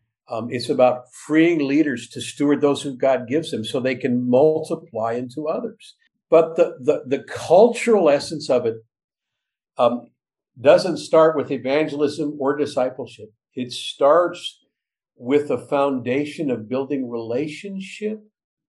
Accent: American